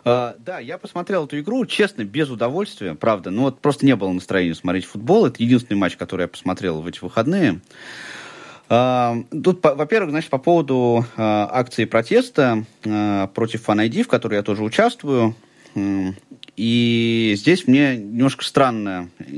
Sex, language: male, Russian